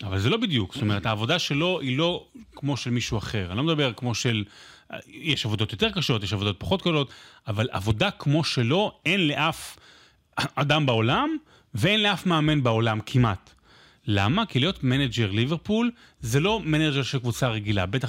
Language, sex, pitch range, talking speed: Hebrew, male, 110-155 Hz, 175 wpm